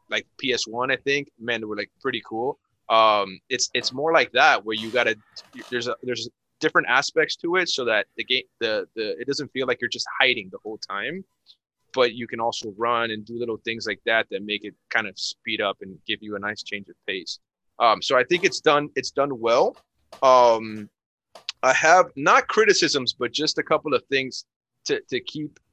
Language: English